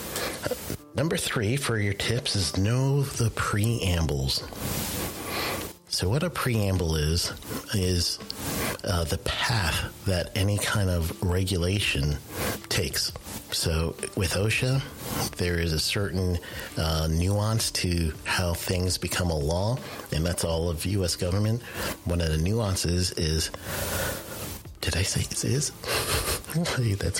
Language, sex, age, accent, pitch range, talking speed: English, male, 50-69, American, 85-105 Hz, 125 wpm